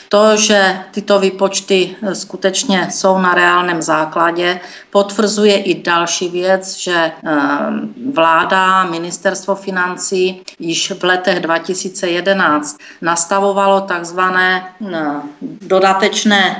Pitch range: 175-205 Hz